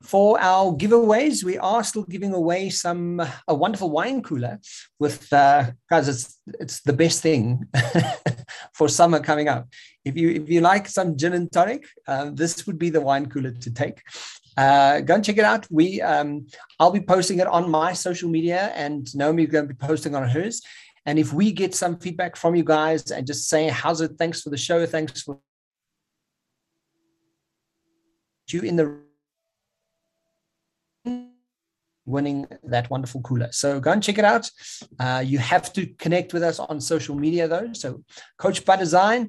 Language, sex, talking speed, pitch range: English, male, 175 wpm, 145-180 Hz